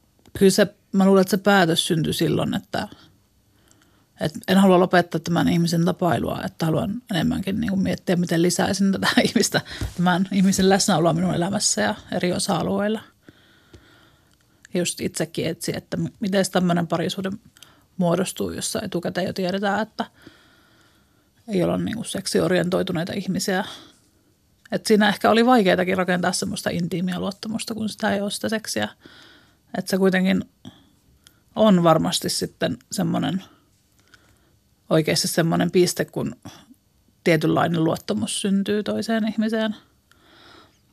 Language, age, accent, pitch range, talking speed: Finnish, 30-49, native, 165-210 Hz, 120 wpm